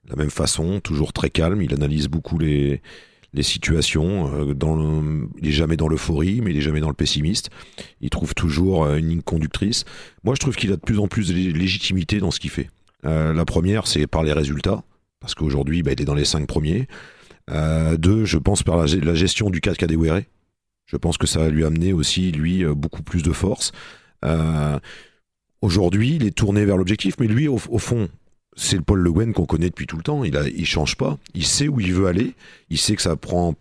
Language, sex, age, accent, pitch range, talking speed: French, male, 40-59, French, 80-105 Hz, 225 wpm